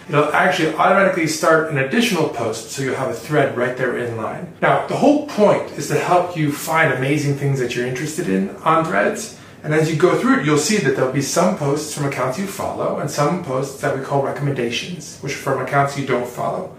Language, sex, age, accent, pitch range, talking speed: English, male, 30-49, American, 130-170 Hz, 230 wpm